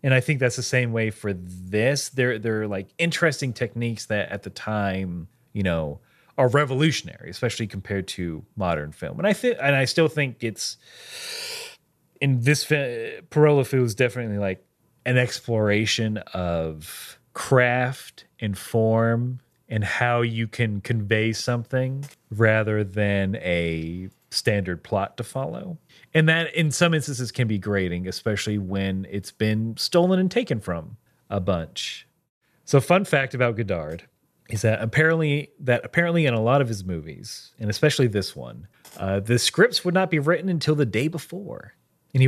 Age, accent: 30-49, American